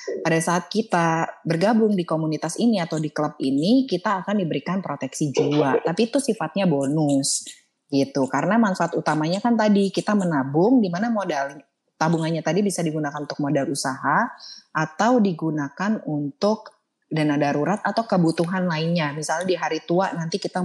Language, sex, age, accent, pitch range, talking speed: Indonesian, female, 20-39, native, 150-200 Hz, 150 wpm